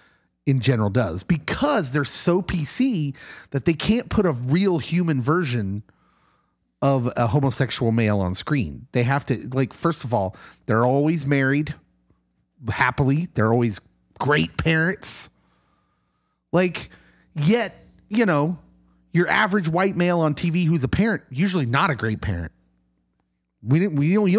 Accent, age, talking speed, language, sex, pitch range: American, 30-49, 145 wpm, English, male, 125-200 Hz